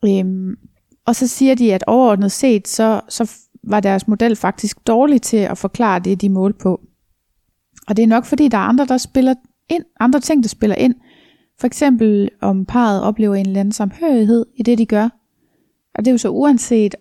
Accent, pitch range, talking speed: native, 190-230 Hz, 200 wpm